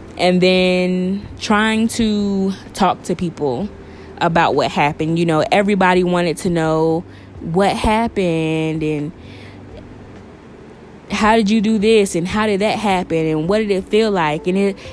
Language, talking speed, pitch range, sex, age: English, 150 wpm, 155-195 Hz, female, 20-39